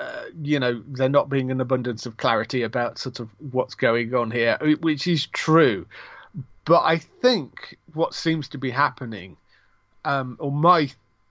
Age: 30-49